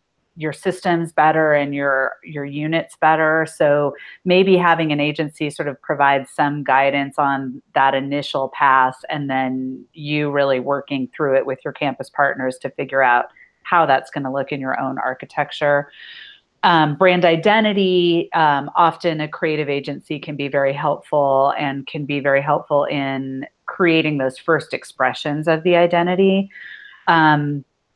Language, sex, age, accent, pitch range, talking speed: English, female, 30-49, American, 140-170 Hz, 150 wpm